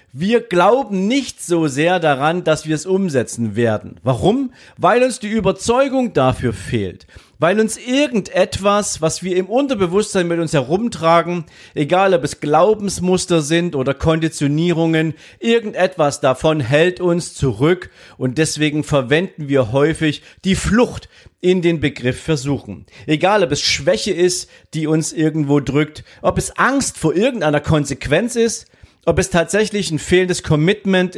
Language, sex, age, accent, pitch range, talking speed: German, male, 40-59, German, 145-190 Hz, 140 wpm